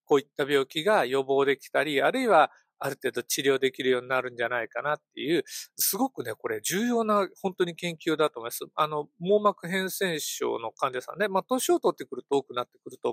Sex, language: male, Japanese